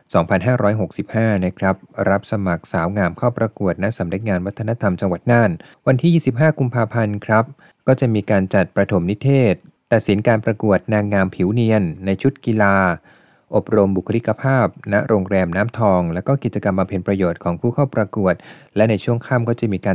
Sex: male